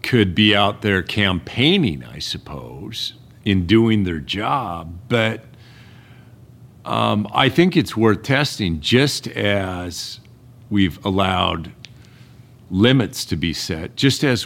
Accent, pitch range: American, 85-115 Hz